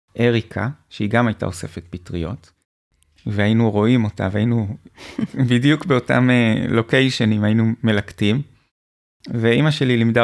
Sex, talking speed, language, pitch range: male, 105 wpm, Hebrew, 105-125 Hz